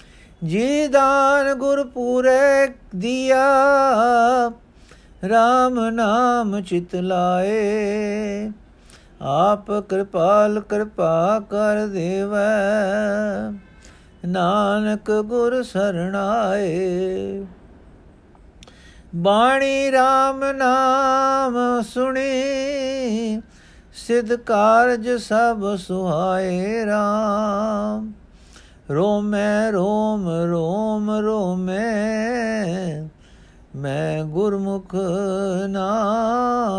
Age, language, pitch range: 50-69, Punjabi, 185-245 Hz